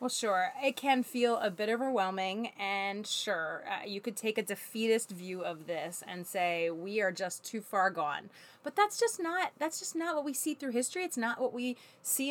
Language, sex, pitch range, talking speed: English, female, 200-270 Hz, 215 wpm